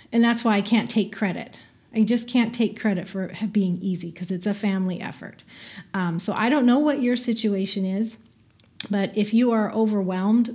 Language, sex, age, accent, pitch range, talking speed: English, female, 30-49, American, 190-225 Hz, 200 wpm